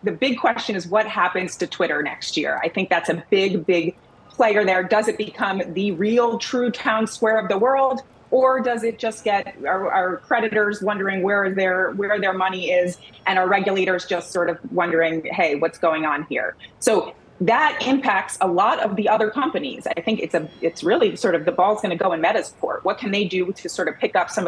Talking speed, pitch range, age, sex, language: 225 wpm, 170-215 Hz, 30-49, female, English